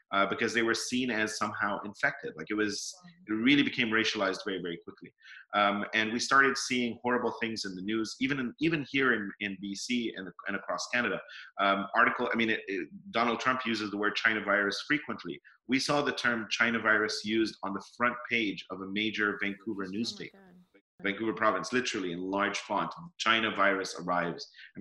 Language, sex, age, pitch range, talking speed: English, male, 30-49, 100-120 Hz, 185 wpm